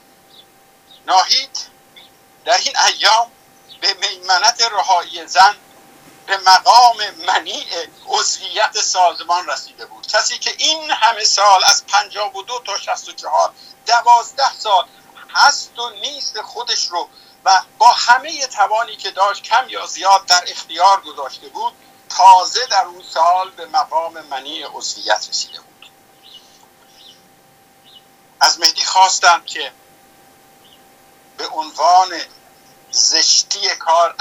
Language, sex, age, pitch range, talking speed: Persian, male, 50-69, 165-235 Hz, 110 wpm